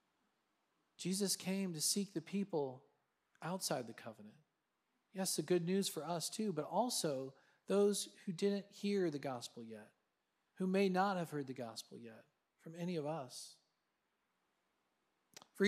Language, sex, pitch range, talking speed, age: English, male, 155-185 Hz, 145 wpm, 40-59